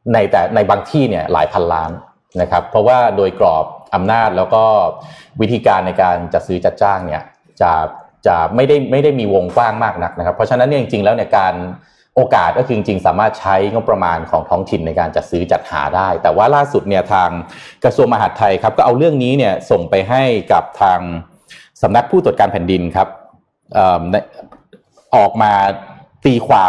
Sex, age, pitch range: male, 20-39, 90-120 Hz